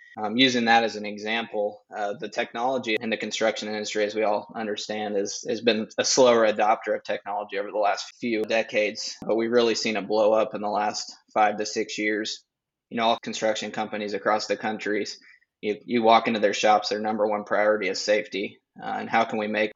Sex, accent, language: male, American, English